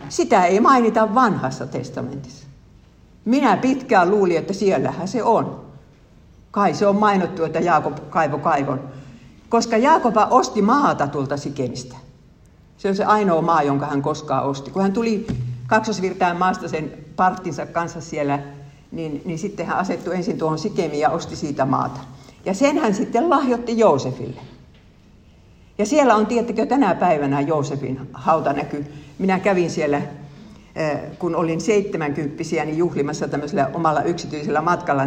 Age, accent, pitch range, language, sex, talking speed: 60-79, native, 140-210 Hz, Finnish, female, 145 wpm